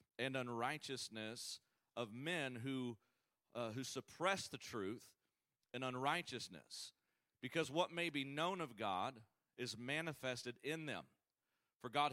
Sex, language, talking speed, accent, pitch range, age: male, English, 125 wpm, American, 120-145 Hz, 40-59